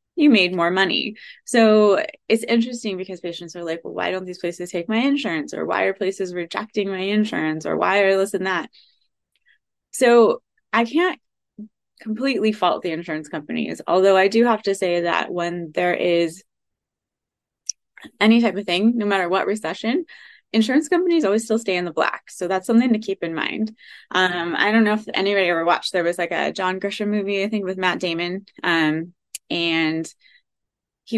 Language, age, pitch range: English, 20-39, 175-215 Hz